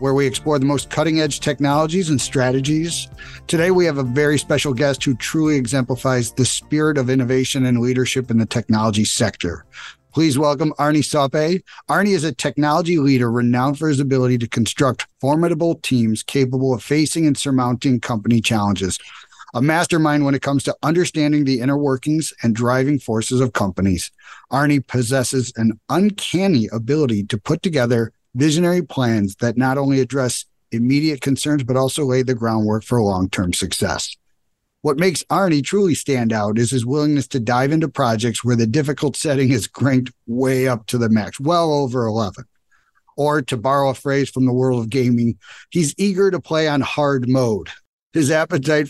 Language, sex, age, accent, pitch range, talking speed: English, male, 50-69, American, 120-150 Hz, 170 wpm